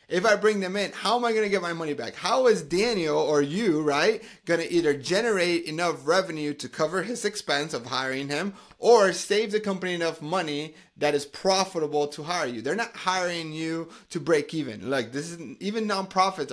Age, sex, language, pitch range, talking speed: 30-49, male, English, 150-190 Hz, 190 wpm